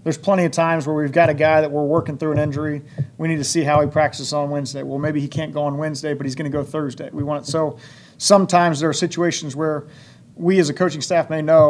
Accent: American